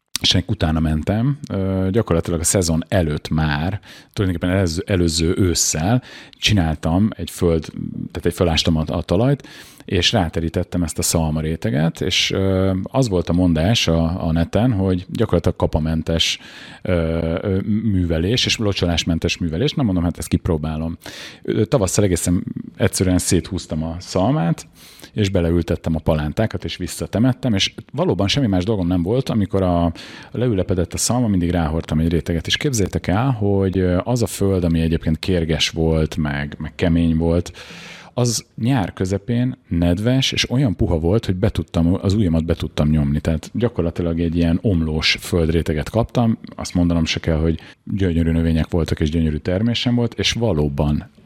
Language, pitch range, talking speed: Hungarian, 80-105 Hz, 145 wpm